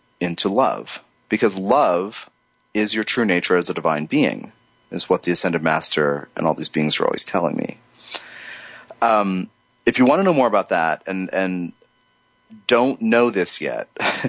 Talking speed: 170 wpm